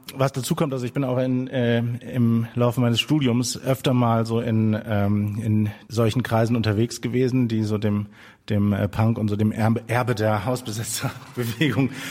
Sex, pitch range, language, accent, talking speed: male, 115-140 Hz, German, German, 170 wpm